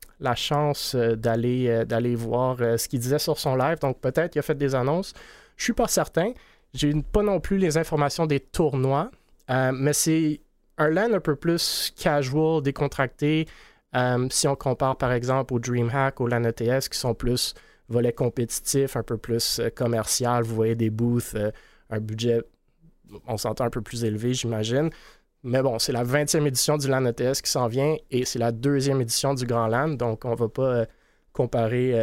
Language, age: French, 20-39